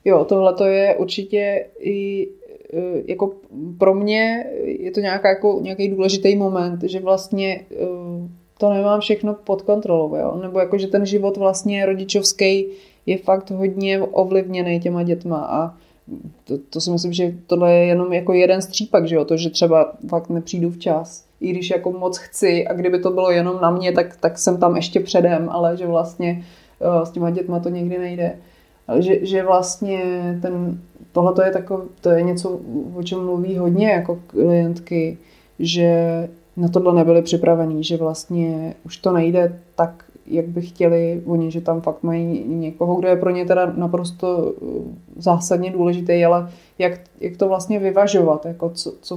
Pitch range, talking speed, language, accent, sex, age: 170-190 Hz, 165 wpm, Czech, native, female, 20-39